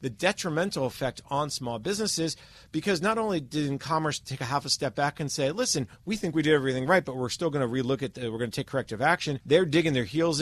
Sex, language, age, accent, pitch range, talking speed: male, English, 40-59, American, 130-175 Hz, 250 wpm